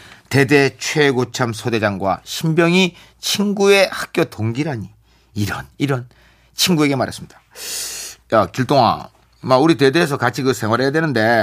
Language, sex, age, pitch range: Korean, male, 40-59, 120-165 Hz